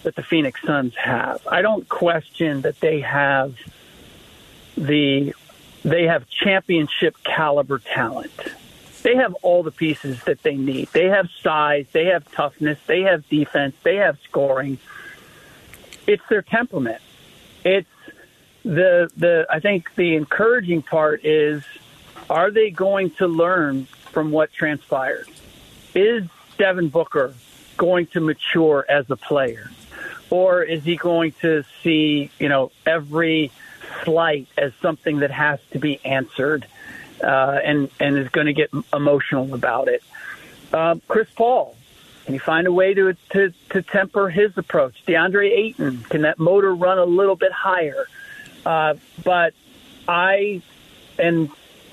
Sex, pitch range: male, 150-190 Hz